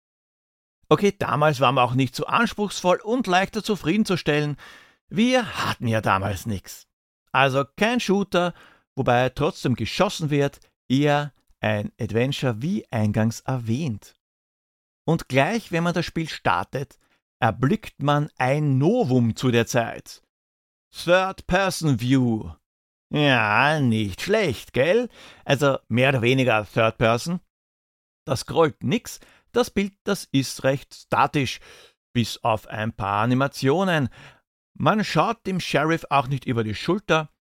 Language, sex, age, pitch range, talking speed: German, male, 60-79, 115-165 Hz, 120 wpm